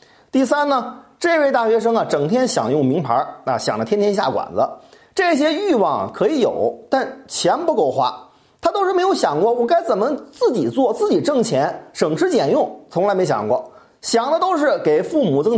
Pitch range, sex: 205-315 Hz, male